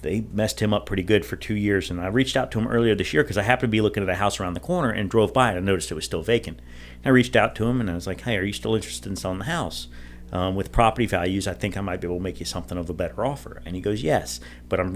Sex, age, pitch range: male, 40-59, 80-110 Hz